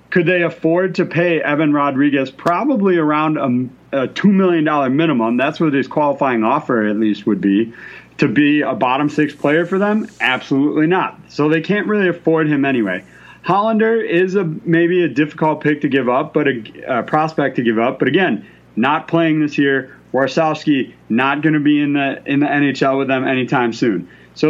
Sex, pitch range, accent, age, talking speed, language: male, 135-165 Hz, American, 30-49, 190 wpm, English